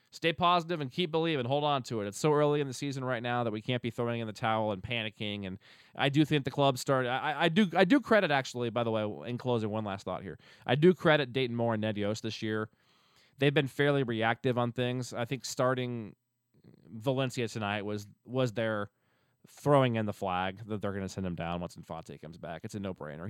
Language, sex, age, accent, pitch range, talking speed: English, male, 20-39, American, 105-140 Hz, 235 wpm